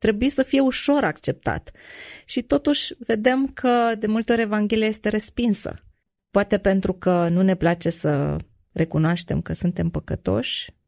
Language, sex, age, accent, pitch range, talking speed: Romanian, female, 30-49, native, 170-205 Hz, 145 wpm